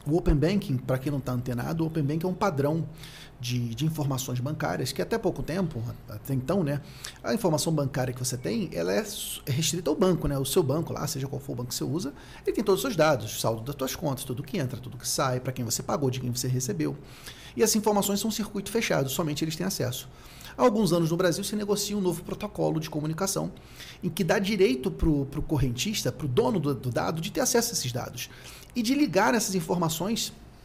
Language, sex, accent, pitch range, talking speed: Portuguese, male, Brazilian, 135-200 Hz, 235 wpm